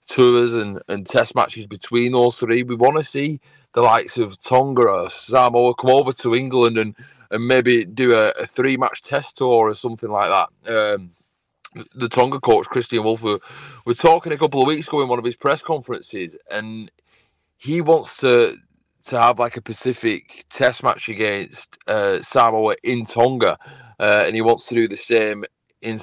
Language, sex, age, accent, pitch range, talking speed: English, male, 30-49, British, 110-130 Hz, 185 wpm